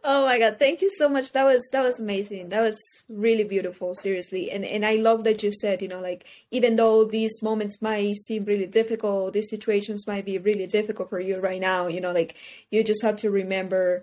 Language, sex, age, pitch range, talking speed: English, female, 20-39, 195-235 Hz, 225 wpm